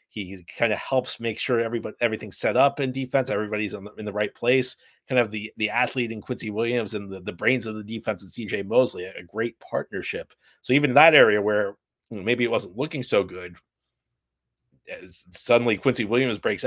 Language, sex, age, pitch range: English, male, 30-49, 100-125 Hz